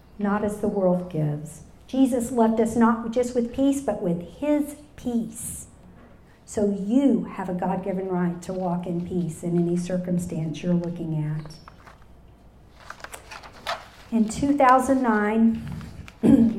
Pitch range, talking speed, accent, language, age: 185-230 Hz, 125 wpm, American, English, 50-69